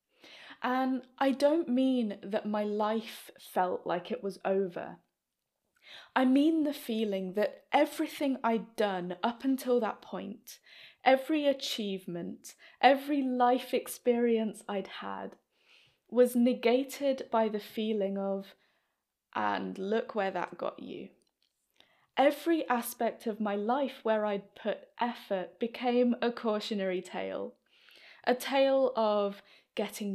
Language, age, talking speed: English, 20-39, 120 wpm